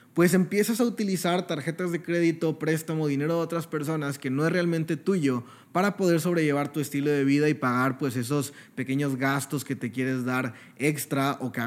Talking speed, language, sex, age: 195 wpm, Spanish, male, 20-39